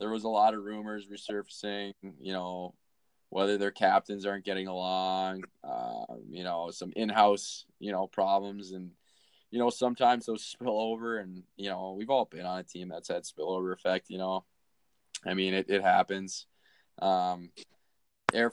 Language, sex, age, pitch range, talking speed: English, male, 20-39, 95-110 Hz, 170 wpm